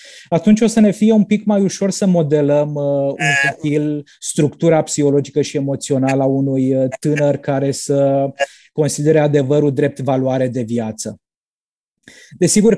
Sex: male